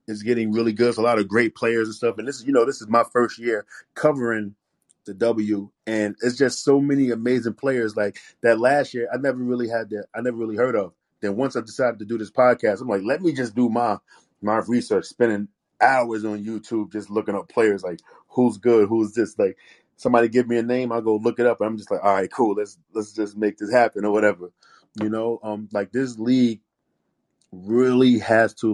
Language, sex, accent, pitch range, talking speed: English, male, American, 110-125 Hz, 230 wpm